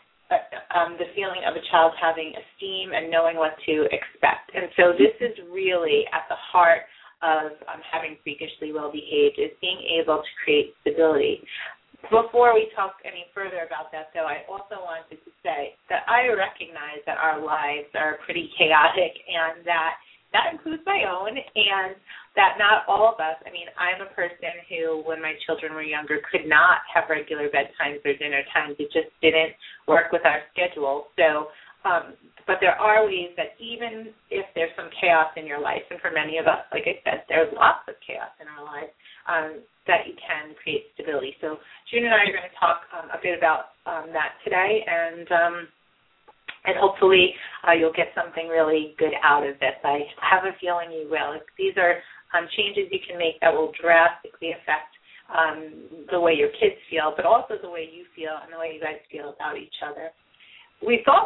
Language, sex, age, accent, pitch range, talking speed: English, female, 30-49, American, 155-215 Hz, 195 wpm